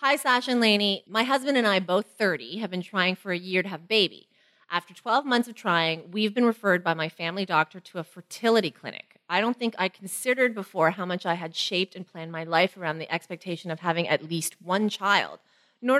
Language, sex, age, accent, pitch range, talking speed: English, female, 30-49, American, 170-220 Hz, 230 wpm